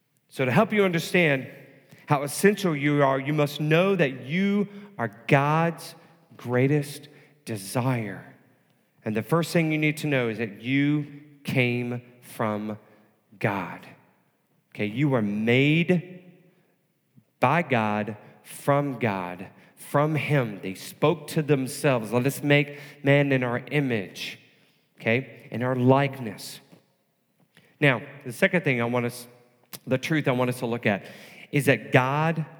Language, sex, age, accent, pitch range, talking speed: English, male, 40-59, American, 125-175 Hz, 135 wpm